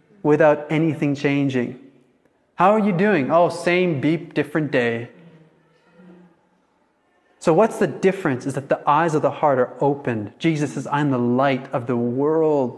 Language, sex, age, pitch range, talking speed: English, male, 30-49, 135-185 Hz, 155 wpm